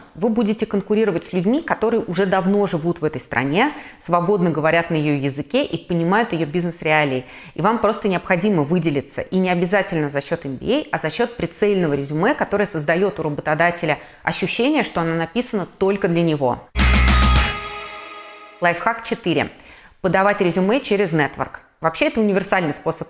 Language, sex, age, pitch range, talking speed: Russian, female, 20-39, 160-205 Hz, 150 wpm